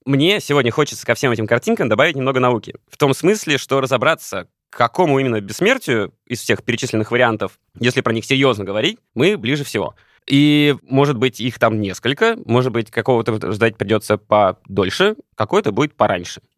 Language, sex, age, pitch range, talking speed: Russian, male, 20-39, 115-140 Hz, 170 wpm